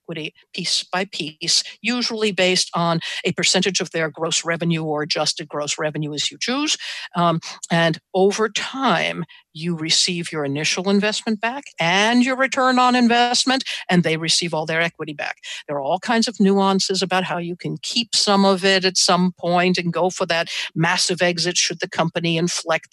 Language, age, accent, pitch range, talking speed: English, 60-79, American, 165-195 Hz, 180 wpm